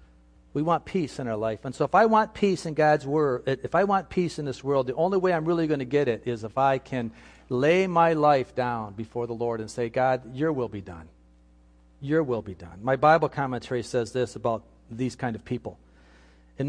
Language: English